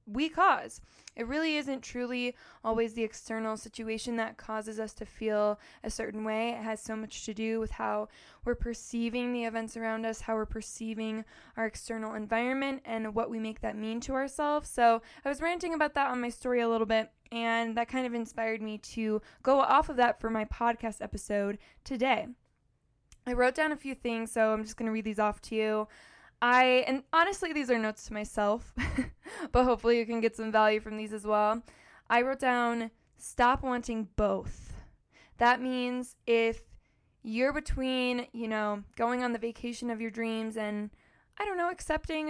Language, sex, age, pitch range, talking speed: English, female, 10-29, 220-255 Hz, 190 wpm